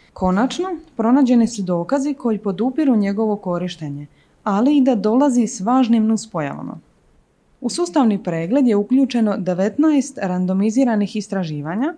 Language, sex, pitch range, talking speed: Croatian, female, 185-255 Hz, 115 wpm